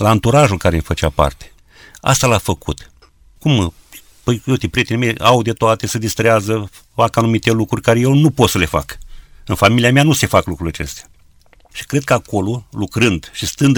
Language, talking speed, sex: Romanian, 195 wpm, male